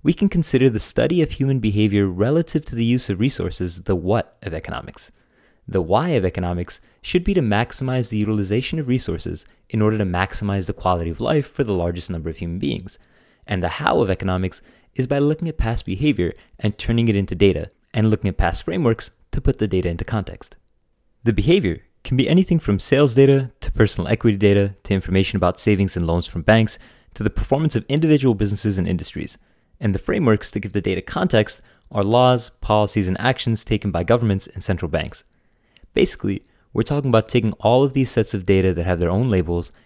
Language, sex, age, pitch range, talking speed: English, male, 20-39, 95-125 Hz, 205 wpm